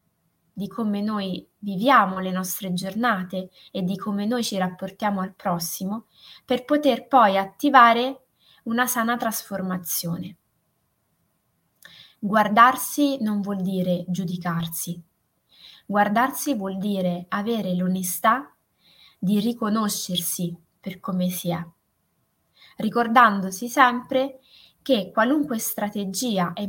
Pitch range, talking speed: 185-235 Hz, 100 wpm